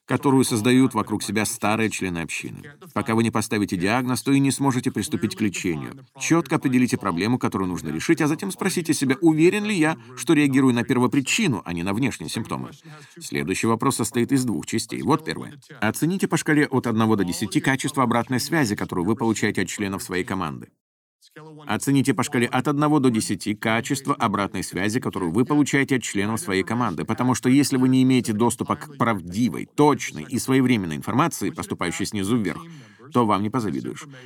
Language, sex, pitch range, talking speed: Russian, male, 105-140 Hz, 180 wpm